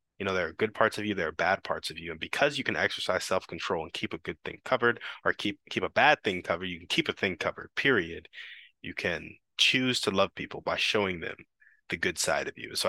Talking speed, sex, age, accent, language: 255 wpm, male, 20-39, American, English